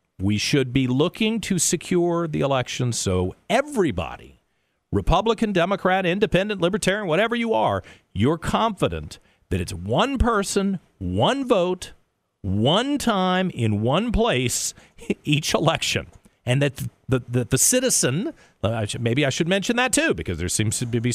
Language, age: English, 50-69